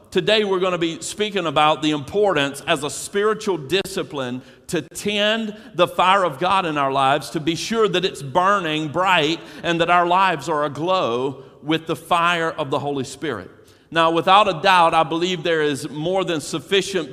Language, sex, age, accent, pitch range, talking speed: English, male, 50-69, American, 140-185 Hz, 185 wpm